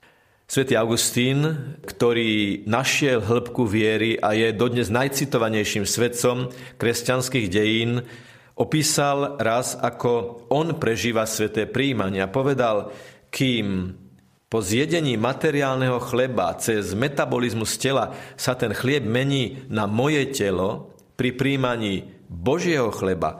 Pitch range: 110-130 Hz